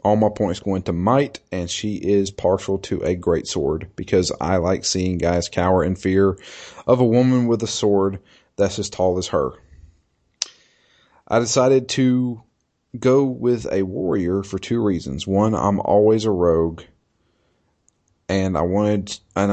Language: English